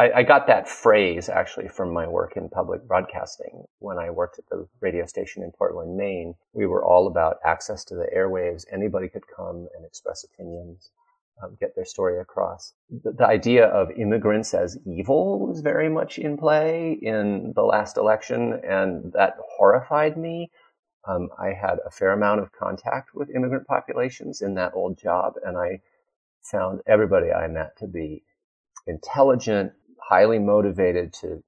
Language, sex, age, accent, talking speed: English, male, 30-49, American, 165 wpm